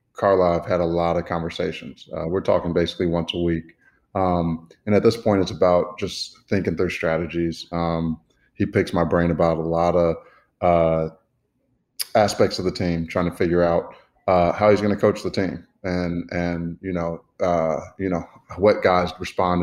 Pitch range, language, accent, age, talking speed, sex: 85-90 Hz, English, American, 20-39, 185 wpm, male